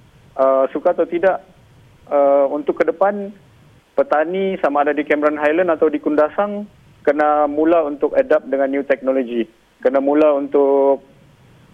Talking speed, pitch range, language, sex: 140 wpm, 135-155 Hz, Malay, male